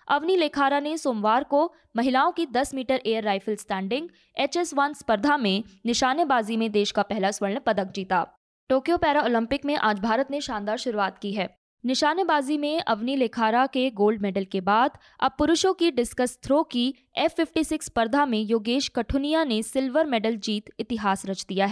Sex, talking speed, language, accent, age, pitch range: female, 180 wpm, Hindi, native, 20-39, 225-295 Hz